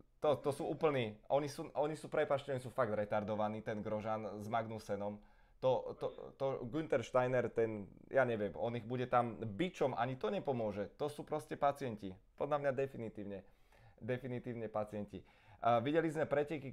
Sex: male